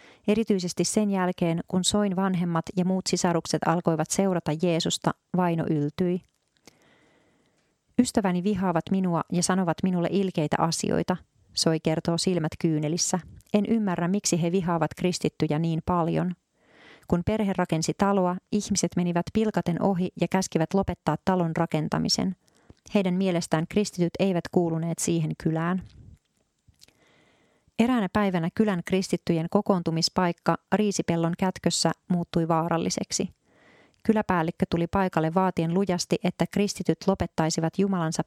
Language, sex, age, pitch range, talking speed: Finnish, female, 30-49, 165-190 Hz, 115 wpm